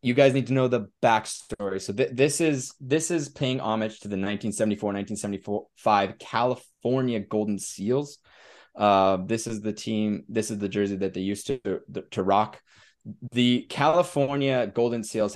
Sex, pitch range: male, 100-130 Hz